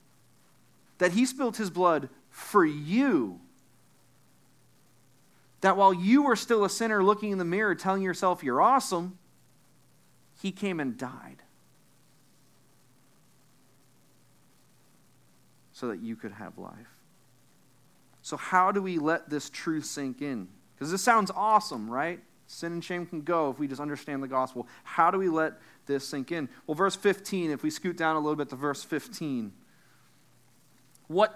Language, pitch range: English, 155-210 Hz